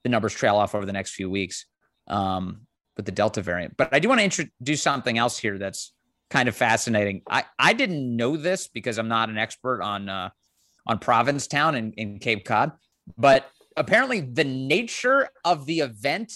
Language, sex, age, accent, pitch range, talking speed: English, male, 30-49, American, 115-155 Hz, 190 wpm